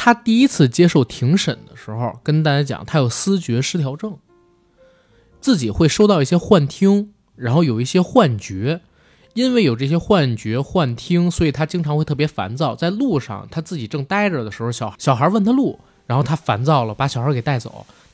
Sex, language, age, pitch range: male, Chinese, 20-39, 125-190 Hz